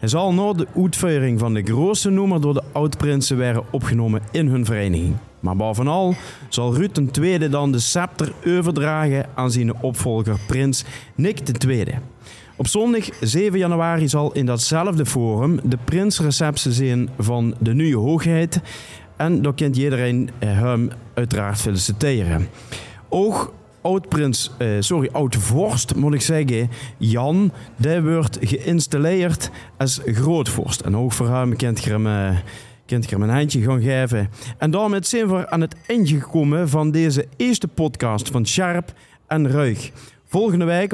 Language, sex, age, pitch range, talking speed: Dutch, male, 40-59, 120-160 Hz, 145 wpm